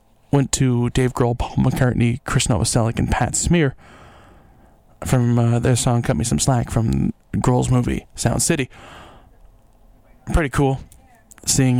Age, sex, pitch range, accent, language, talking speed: 20-39, male, 115-130 Hz, American, English, 135 wpm